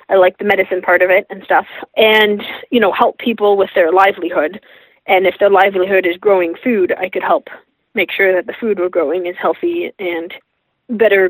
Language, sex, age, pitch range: English, female, 20-39, 185-225 Hz